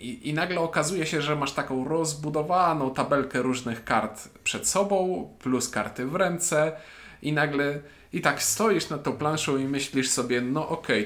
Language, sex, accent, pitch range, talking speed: Polish, male, native, 130-165 Hz, 170 wpm